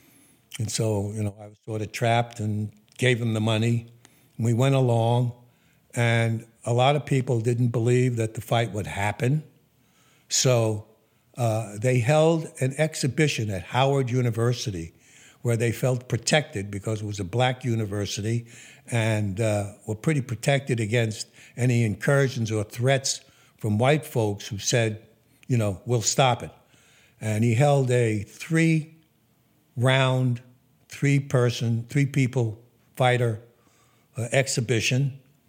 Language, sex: English, male